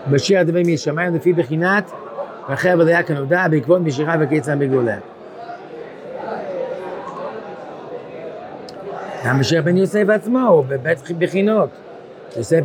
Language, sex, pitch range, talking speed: Hebrew, male, 150-185 Hz, 95 wpm